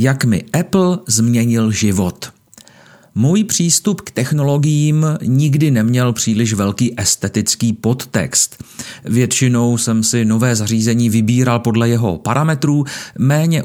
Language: Czech